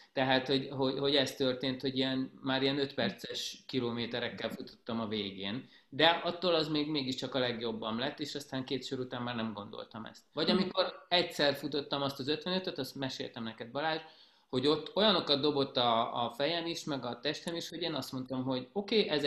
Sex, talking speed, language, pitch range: male, 195 wpm, Hungarian, 120-150 Hz